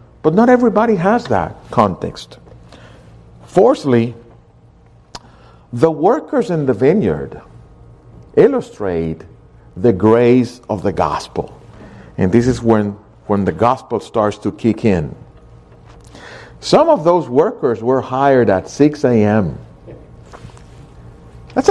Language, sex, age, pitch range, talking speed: English, male, 50-69, 120-185 Hz, 110 wpm